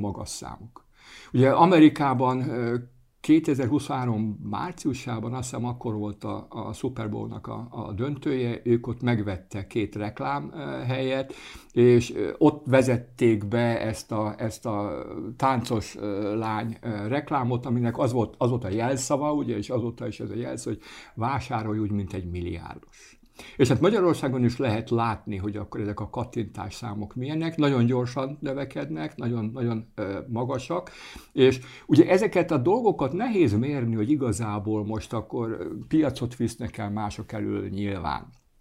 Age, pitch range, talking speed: 60-79, 105-125 Hz, 130 wpm